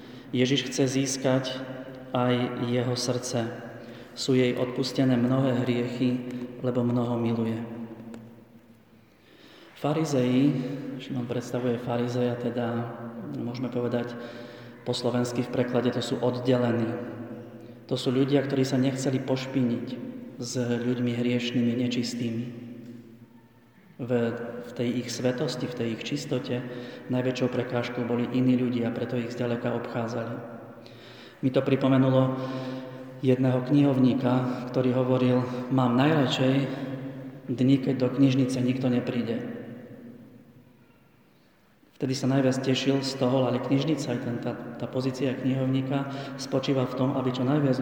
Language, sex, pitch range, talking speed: Slovak, male, 120-130 Hz, 115 wpm